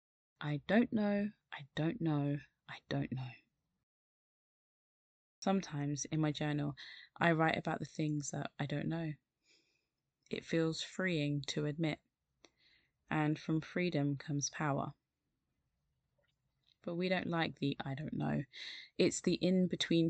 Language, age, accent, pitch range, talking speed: English, 20-39, British, 145-175 Hz, 130 wpm